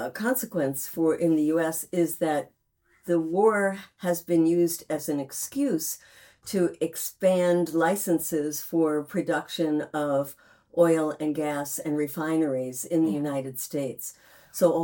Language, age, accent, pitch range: English, 60-79, American, 145-175 Hz